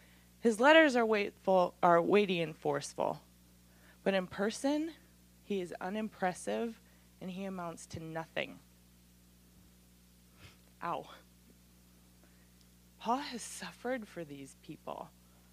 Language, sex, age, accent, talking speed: English, female, 20-39, American, 95 wpm